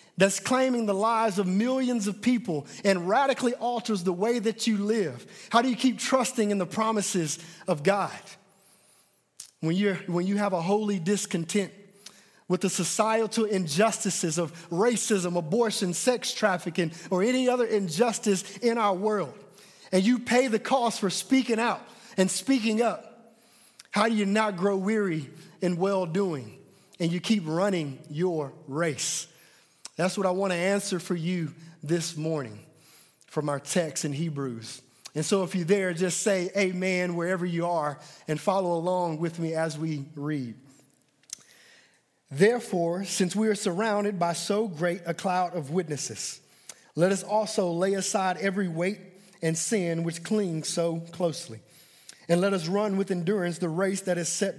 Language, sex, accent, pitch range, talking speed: English, male, American, 170-215 Hz, 160 wpm